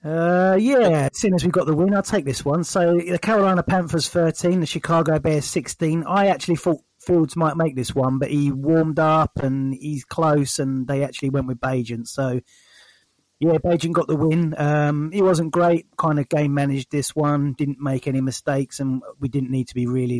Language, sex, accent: English, male, British